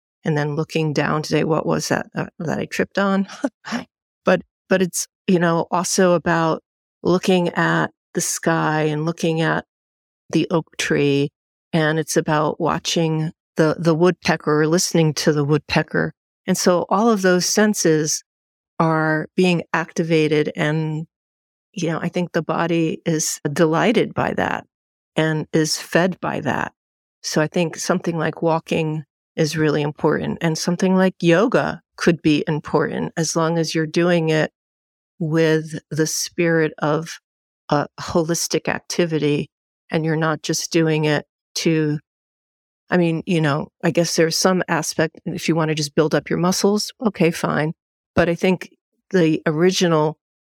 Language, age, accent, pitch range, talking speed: English, 50-69, American, 155-175 Hz, 150 wpm